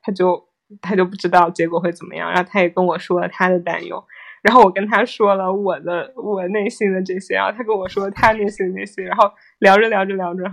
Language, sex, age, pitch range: Chinese, female, 20-39, 180-215 Hz